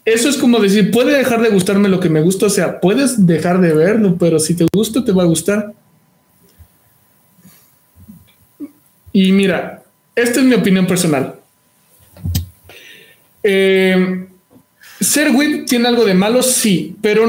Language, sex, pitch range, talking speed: Spanish, male, 180-230 Hz, 145 wpm